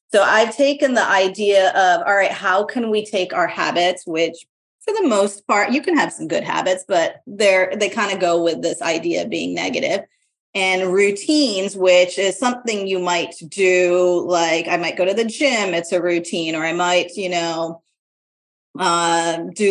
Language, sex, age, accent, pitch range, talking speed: English, female, 30-49, American, 180-220 Hz, 190 wpm